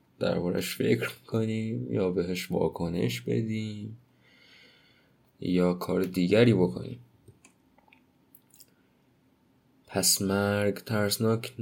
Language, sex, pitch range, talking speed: Persian, male, 100-125 Hz, 70 wpm